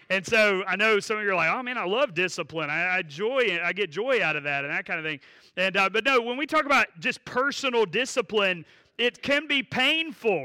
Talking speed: 245 wpm